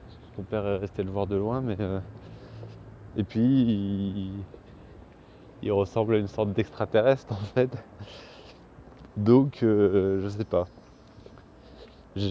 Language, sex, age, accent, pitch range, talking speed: French, male, 20-39, French, 95-110 Hz, 130 wpm